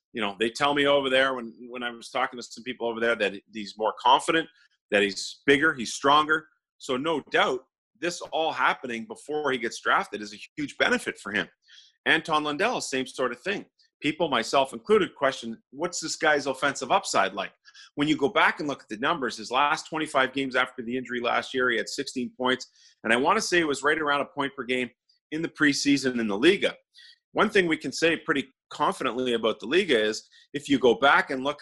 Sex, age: male, 40-59